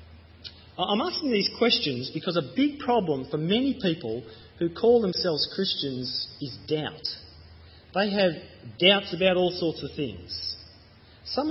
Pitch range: 110-185 Hz